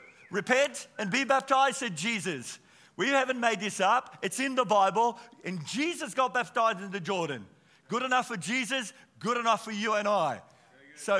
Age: 50-69